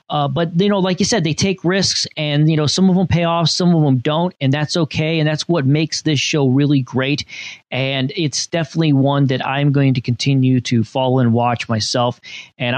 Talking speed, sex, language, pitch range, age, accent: 225 wpm, male, English, 125-160 Hz, 30-49, American